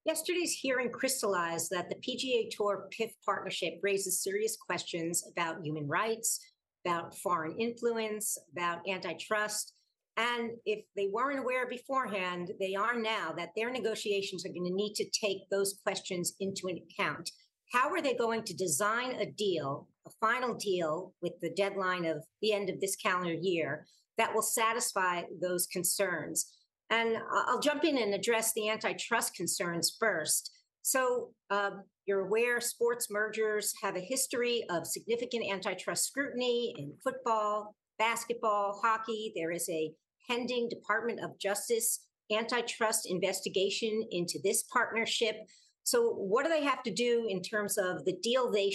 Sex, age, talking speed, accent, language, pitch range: female, 50-69, 150 wpm, American, English, 185-235 Hz